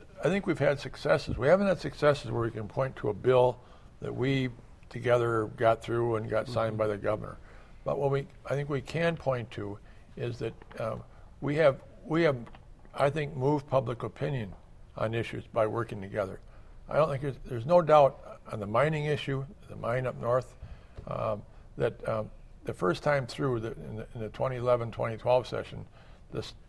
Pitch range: 110-140 Hz